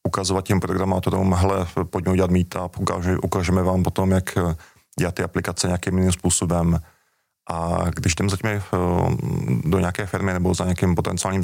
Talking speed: 145 wpm